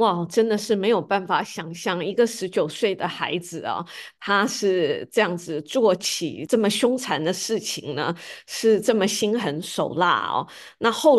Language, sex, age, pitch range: Chinese, female, 20-39, 180-225 Hz